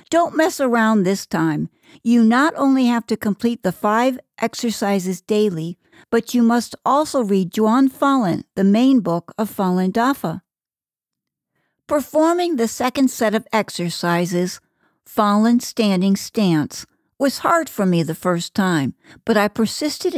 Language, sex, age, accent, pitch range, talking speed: English, female, 60-79, American, 190-250 Hz, 140 wpm